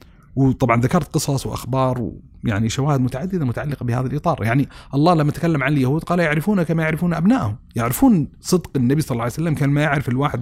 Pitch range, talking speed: 120-150 Hz, 185 wpm